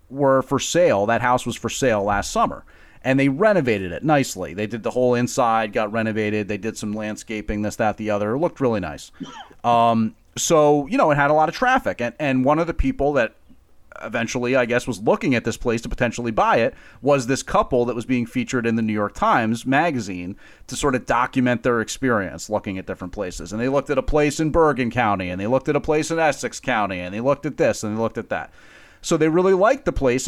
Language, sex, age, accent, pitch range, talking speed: English, male, 30-49, American, 115-160 Hz, 240 wpm